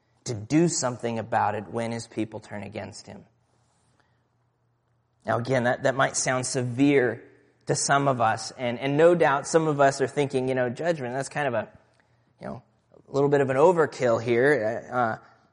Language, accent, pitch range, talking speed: English, American, 120-155 Hz, 185 wpm